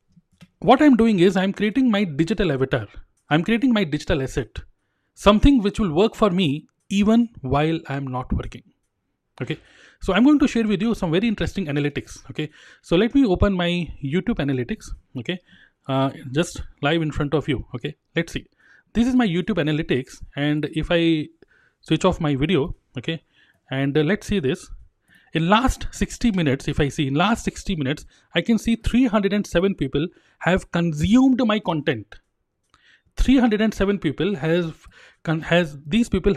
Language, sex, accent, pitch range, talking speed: Hindi, male, native, 150-205 Hz, 180 wpm